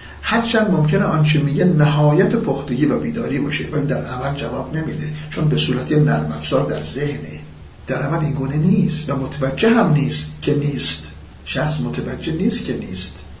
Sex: male